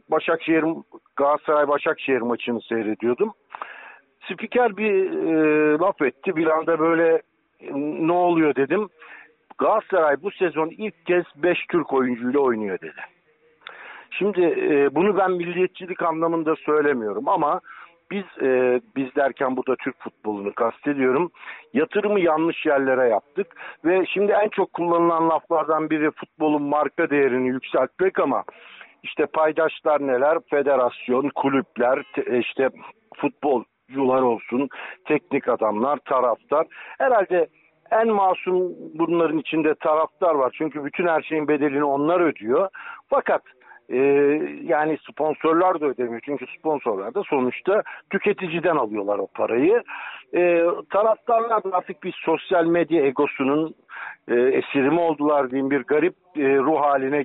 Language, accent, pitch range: Turkish, native, 140-185 Hz